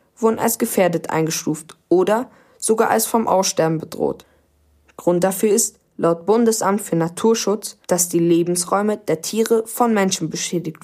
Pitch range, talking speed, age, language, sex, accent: 170-220 Hz, 140 wpm, 20-39, German, female, German